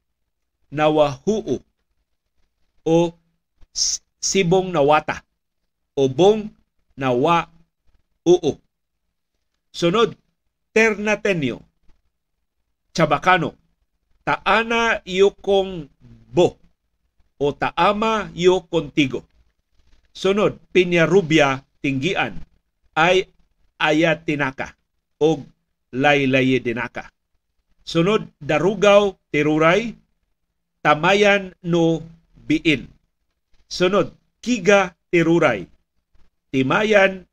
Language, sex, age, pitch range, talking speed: Filipino, male, 50-69, 125-185 Hz, 55 wpm